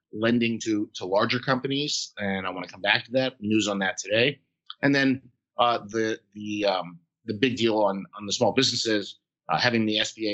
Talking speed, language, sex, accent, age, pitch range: 205 wpm, English, male, American, 30-49, 105-130 Hz